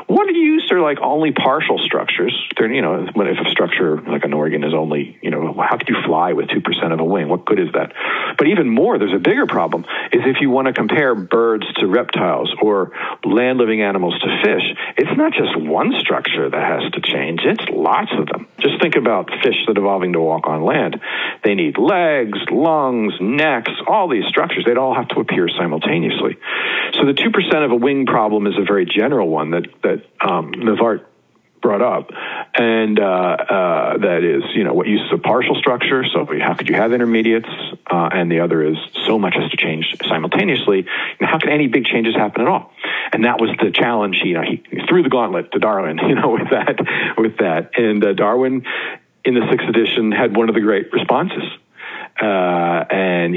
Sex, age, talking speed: male, 50-69, 205 wpm